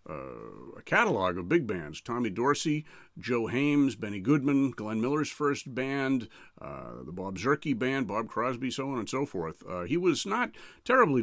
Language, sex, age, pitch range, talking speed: English, male, 50-69, 95-135 Hz, 175 wpm